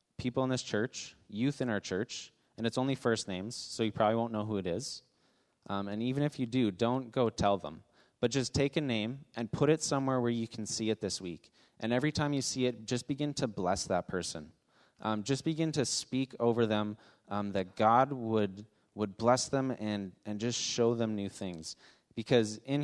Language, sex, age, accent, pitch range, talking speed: English, male, 20-39, American, 105-130 Hz, 215 wpm